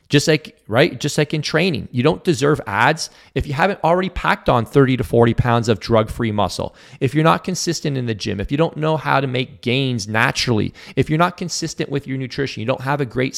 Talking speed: 235 wpm